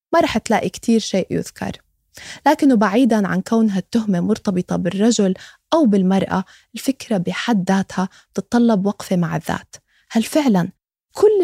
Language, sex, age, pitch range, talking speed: Arabic, female, 20-39, 195-255 Hz, 130 wpm